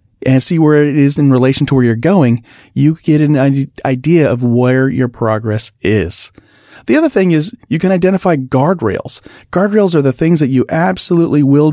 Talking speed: 185 wpm